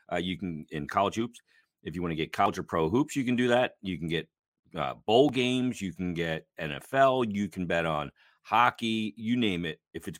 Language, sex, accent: English, male, American